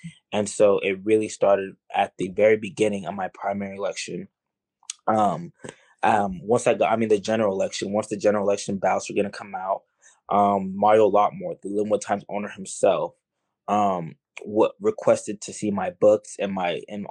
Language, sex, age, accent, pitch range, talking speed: English, male, 20-39, American, 100-115 Hz, 180 wpm